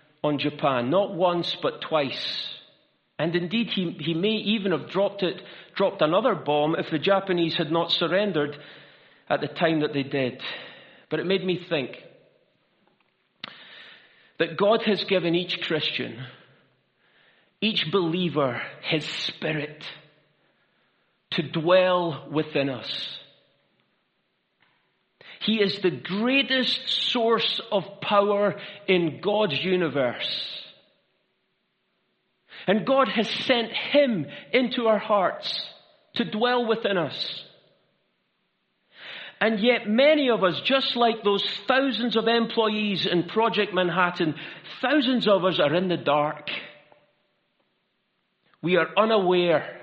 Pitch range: 165-225 Hz